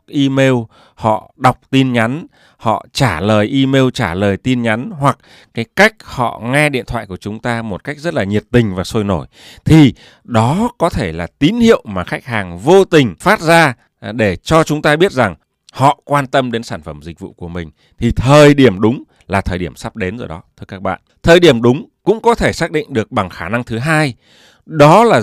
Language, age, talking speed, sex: Vietnamese, 20-39, 220 wpm, male